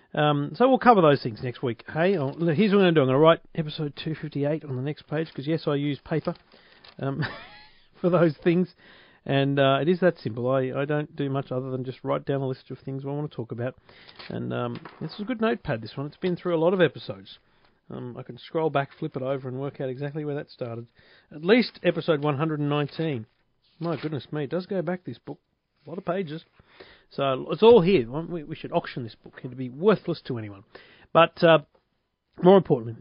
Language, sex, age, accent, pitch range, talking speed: English, male, 40-59, Australian, 130-175 Hz, 230 wpm